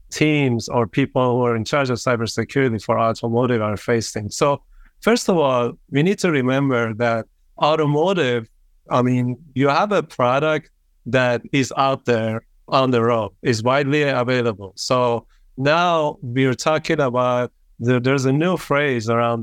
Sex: male